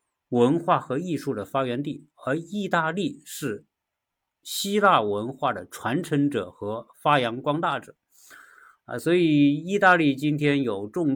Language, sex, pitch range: Chinese, male, 115-175 Hz